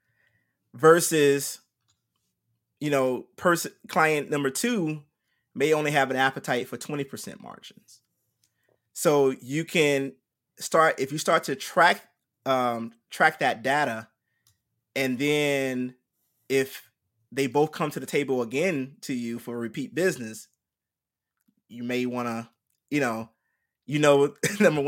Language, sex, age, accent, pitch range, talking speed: English, male, 20-39, American, 120-145 Hz, 130 wpm